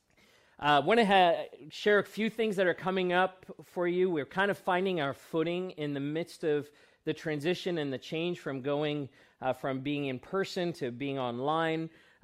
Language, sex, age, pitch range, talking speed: English, male, 40-59, 140-165 Hz, 190 wpm